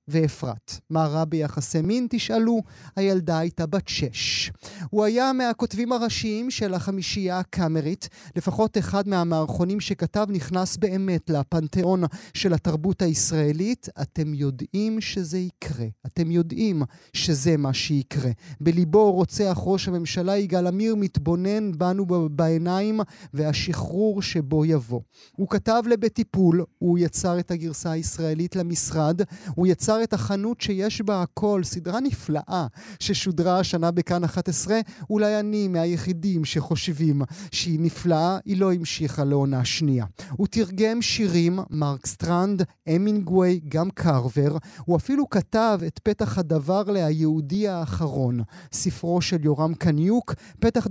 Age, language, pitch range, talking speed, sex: 30-49, Hebrew, 155-200 Hz, 120 wpm, male